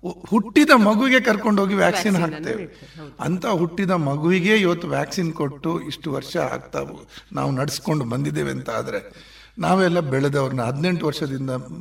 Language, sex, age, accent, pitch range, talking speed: Kannada, male, 60-79, native, 155-195 Hz, 115 wpm